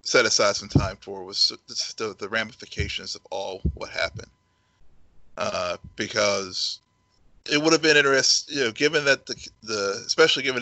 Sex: male